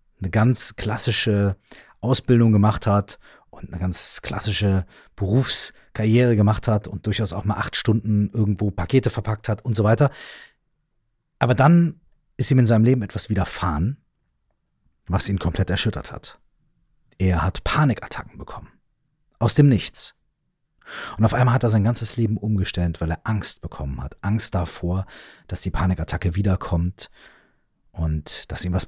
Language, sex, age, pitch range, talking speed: German, male, 40-59, 95-120 Hz, 150 wpm